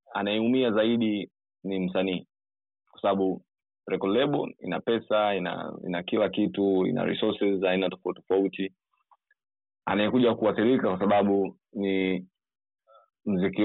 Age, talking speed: 20-39, 100 wpm